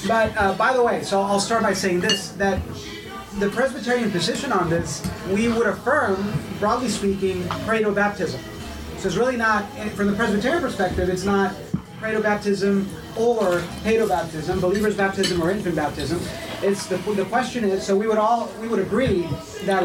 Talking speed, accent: 165 wpm, American